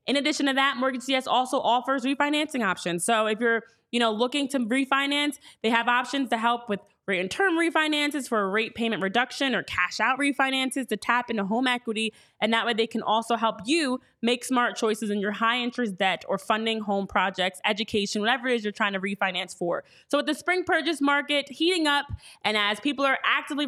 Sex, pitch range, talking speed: female, 220-280 Hz, 215 wpm